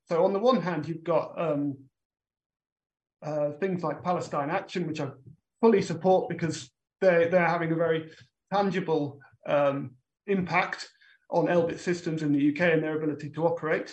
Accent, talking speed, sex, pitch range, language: British, 160 wpm, male, 150-180 Hz, English